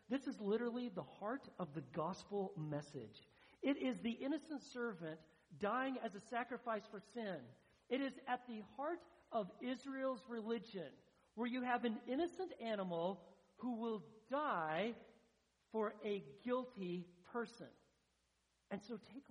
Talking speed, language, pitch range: 135 wpm, English, 195-250 Hz